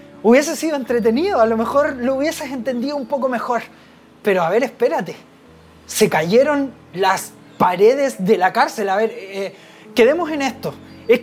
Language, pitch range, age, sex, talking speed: Spanish, 215-280 Hz, 30-49, male, 160 wpm